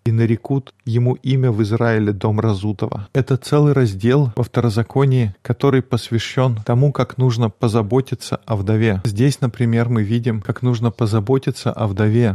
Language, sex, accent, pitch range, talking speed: Russian, male, native, 110-125 Hz, 145 wpm